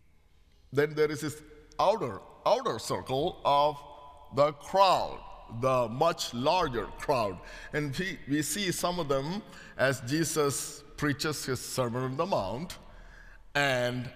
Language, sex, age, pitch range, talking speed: English, male, 60-79, 115-155 Hz, 125 wpm